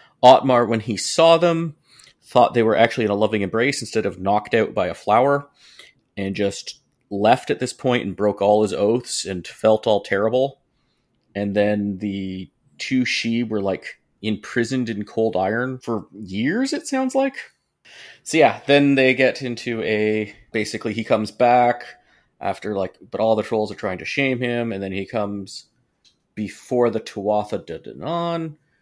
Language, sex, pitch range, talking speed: English, male, 100-125 Hz, 170 wpm